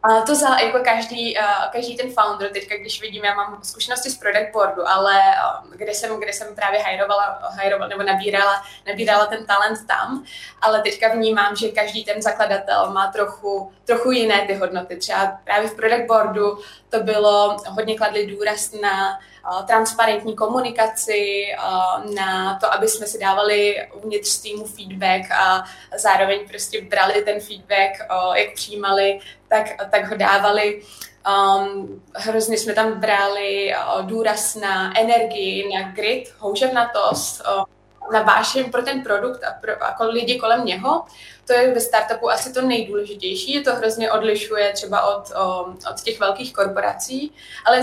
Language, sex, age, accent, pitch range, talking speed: Czech, female, 20-39, native, 200-230 Hz, 150 wpm